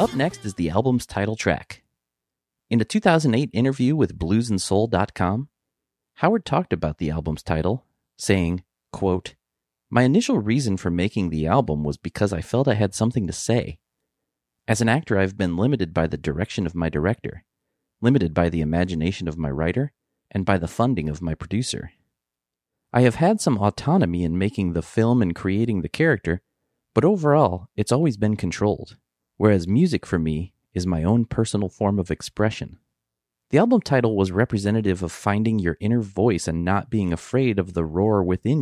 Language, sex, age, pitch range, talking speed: English, male, 30-49, 85-120 Hz, 170 wpm